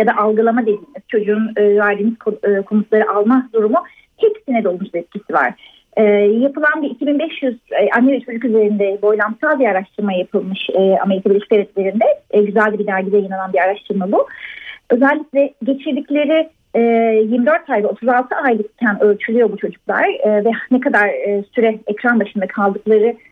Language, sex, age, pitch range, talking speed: Turkish, female, 30-49, 210-275 Hz, 140 wpm